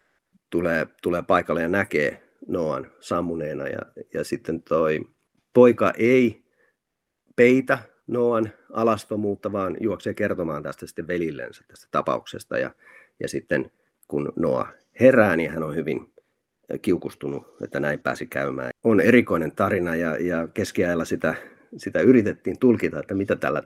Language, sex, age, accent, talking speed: Finnish, male, 40-59, native, 130 wpm